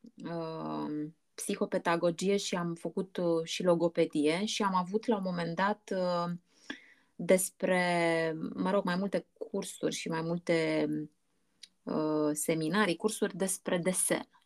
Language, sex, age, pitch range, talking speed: Romanian, female, 20-39, 175-220 Hz, 110 wpm